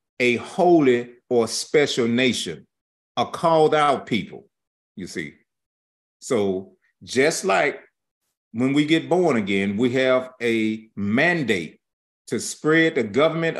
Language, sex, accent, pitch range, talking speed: English, male, American, 115-155 Hz, 120 wpm